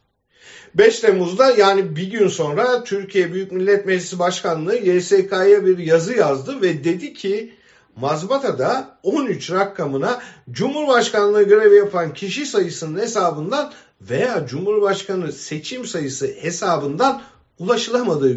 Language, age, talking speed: German, 50-69, 110 wpm